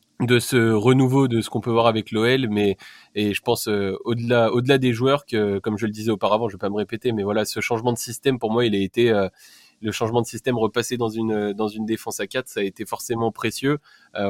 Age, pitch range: 20-39, 105-125 Hz